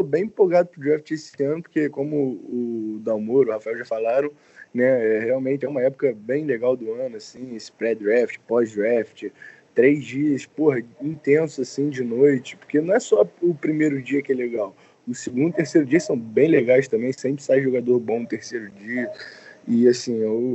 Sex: male